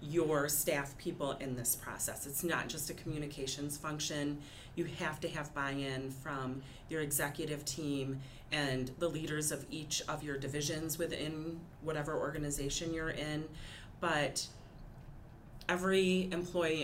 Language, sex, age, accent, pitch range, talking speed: English, female, 40-59, American, 140-180 Hz, 130 wpm